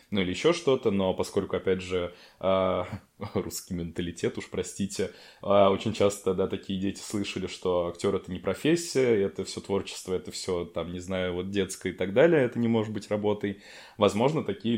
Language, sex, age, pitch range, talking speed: Russian, male, 20-39, 95-110 Hz, 175 wpm